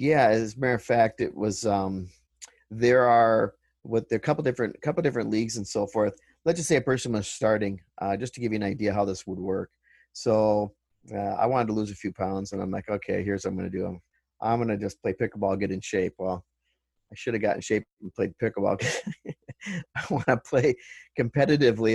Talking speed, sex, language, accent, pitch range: 230 wpm, male, English, American, 100-120 Hz